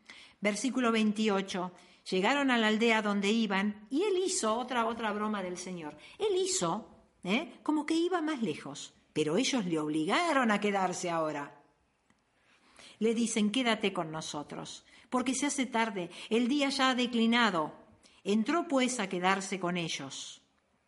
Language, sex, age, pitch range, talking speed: Spanish, female, 50-69, 195-250 Hz, 145 wpm